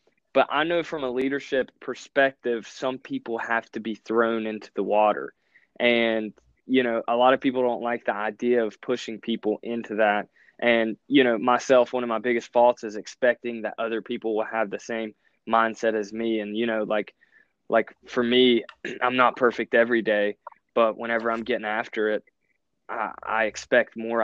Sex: male